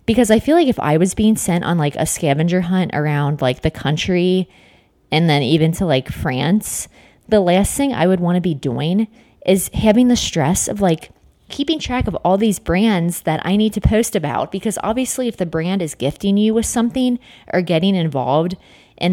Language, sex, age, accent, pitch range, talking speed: English, female, 20-39, American, 165-220 Hz, 205 wpm